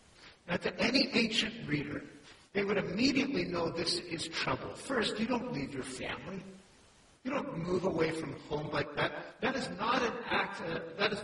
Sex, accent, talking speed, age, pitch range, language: male, American, 180 wpm, 60-79, 155-215 Hz, English